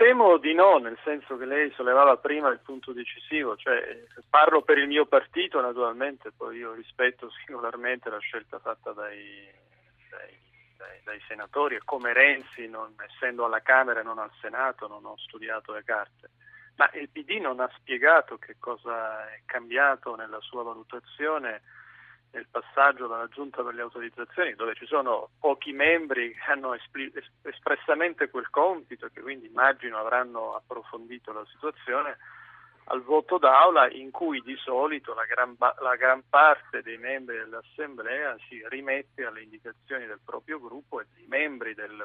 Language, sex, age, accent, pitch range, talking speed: Italian, male, 40-59, native, 115-140 Hz, 155 wpm